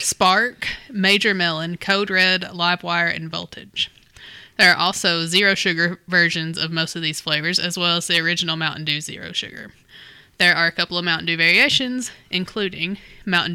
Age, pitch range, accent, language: 20-39, 165-190 Hz, American, English